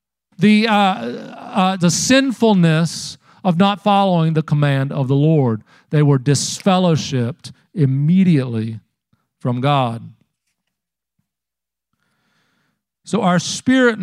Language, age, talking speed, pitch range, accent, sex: English, 40-59, 90 wpm, 150-190 Hz, American, male